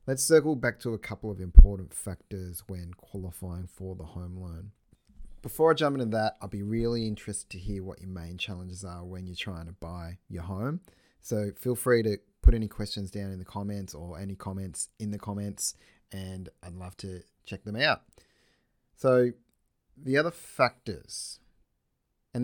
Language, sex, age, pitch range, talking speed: English, male, 30-49, 90-110 Hz, 180 wpm